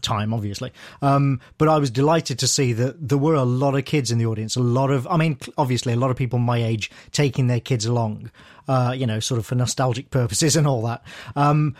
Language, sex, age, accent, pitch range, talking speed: English, male, 40-59, British, 120-145 Hz, 240 wpm